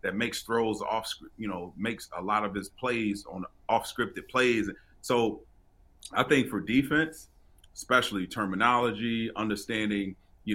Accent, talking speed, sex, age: American, 140 wpm, male, 30-49